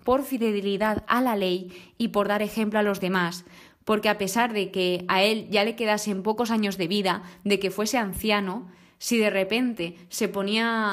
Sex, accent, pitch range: female, Spanish, 190-220 Hz